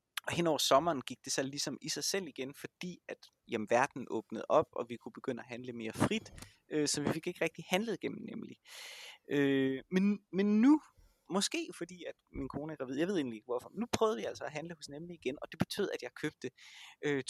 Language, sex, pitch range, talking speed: Danish, male, 120-170 Hz, 225 wpm